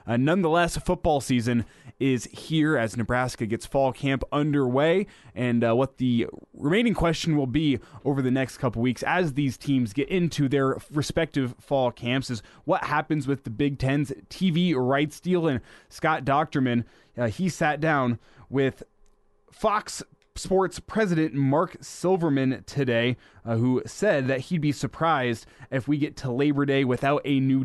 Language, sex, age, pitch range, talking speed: English, male, 20-39, 125-155 Hz, 160 wpm